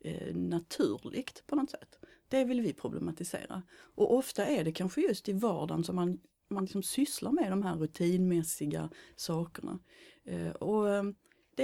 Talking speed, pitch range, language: 145 wpm, 170-230 Hz, Swedish